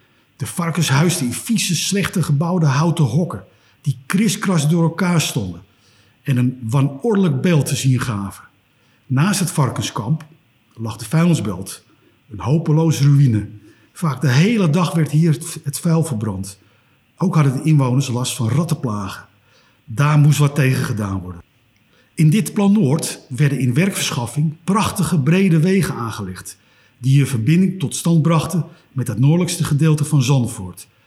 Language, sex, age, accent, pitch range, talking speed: Dutch, male, 50-69, Dutch, 125-170 Hz, 145 wpm